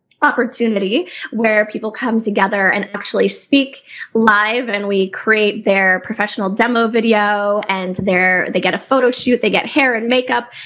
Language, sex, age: English, female, 10-29